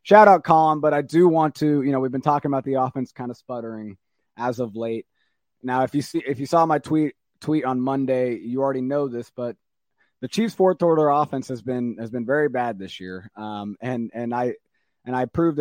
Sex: male